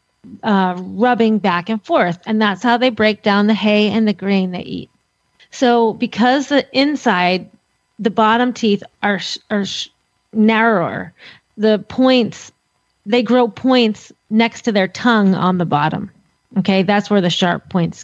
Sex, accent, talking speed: female, American, 155 wpm